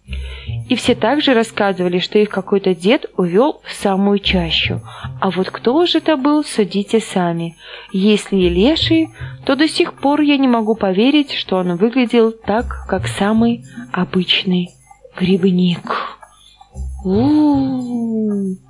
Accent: native